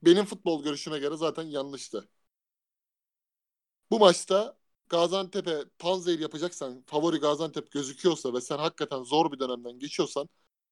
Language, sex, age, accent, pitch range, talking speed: Turkish, male, 30-49, native, 160-205 Hz, 120 wpm